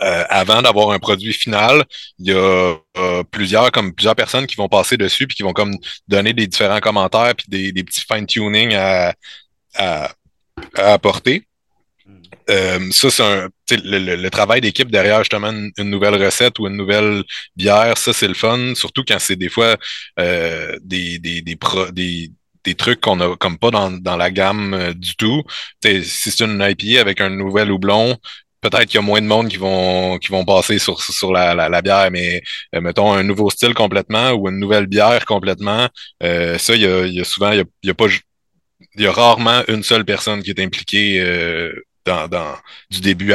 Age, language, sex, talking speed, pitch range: 30-49, French, male, 205 wpm, 90-110 Hz